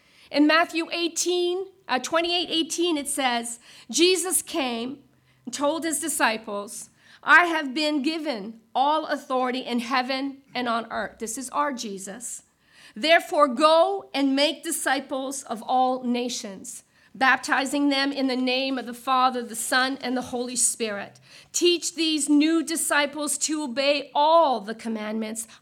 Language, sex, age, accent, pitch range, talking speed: English, female, 50-69, American, 245-315 Hz, 140 wpm